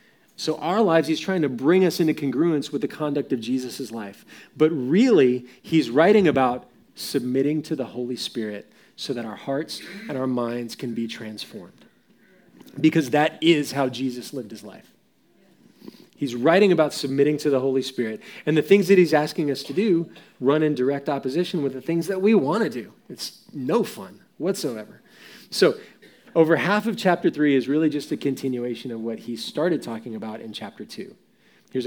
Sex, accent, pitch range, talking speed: male, American, 130-165 Hz, 185 wpm